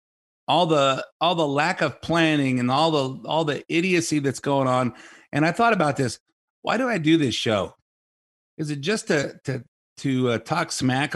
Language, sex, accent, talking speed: English, male, American, 195 wpm